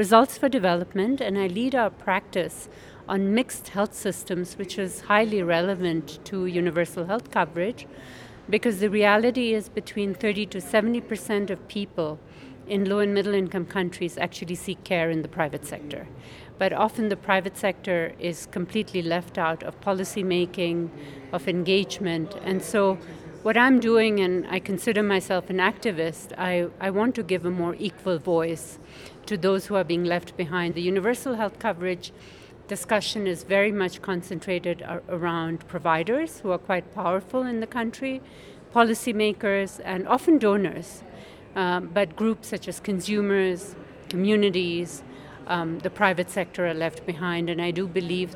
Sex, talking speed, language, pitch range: female, 155 wpm, English, 175-205 Hz